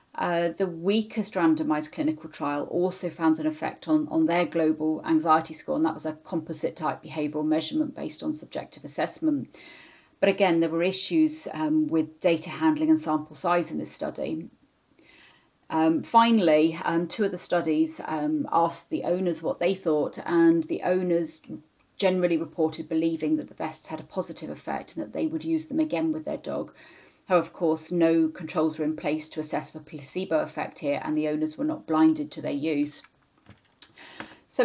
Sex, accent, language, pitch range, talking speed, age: female, British, English, 155-190 Hz, 180 wpm, 40-59